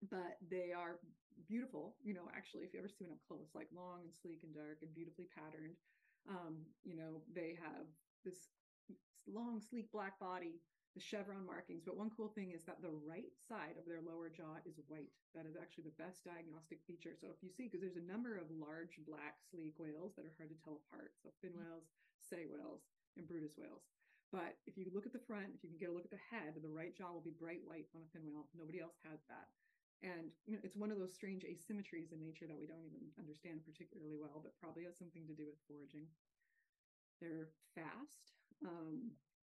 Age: 30-49